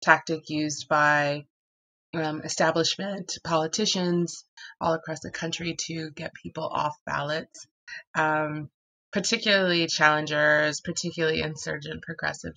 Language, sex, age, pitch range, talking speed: English, female, 20-39, 145-165 Hz, 100 wpm